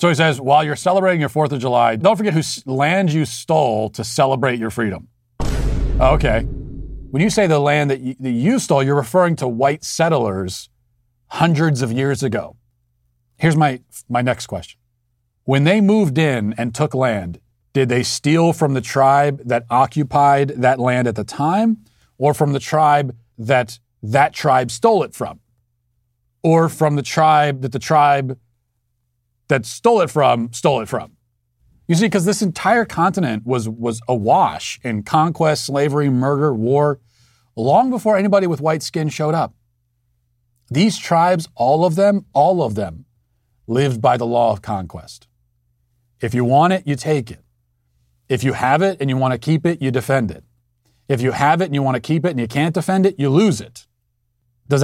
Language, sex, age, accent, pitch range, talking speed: English, male, 40-59, American, 120-155 Hz, 175 wpm